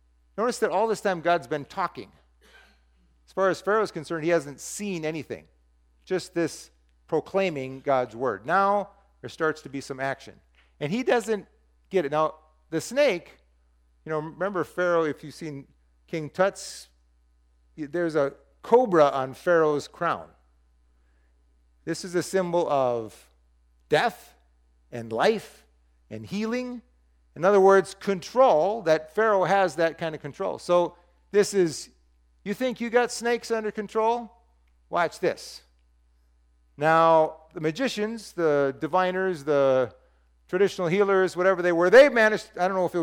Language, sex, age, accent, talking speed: English, male, 50-69, American, 145 wpm